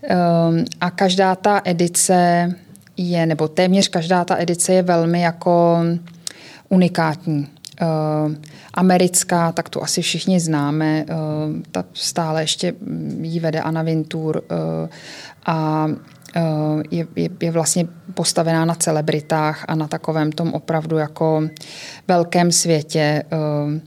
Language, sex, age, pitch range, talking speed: Czech, female, 20-39, 160-185 Hz, 110 wpm